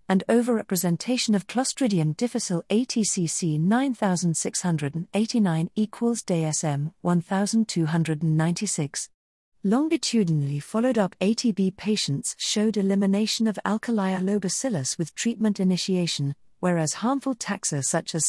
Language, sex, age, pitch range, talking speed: English, female, 50-69, 160-215 Hz, 90 wpm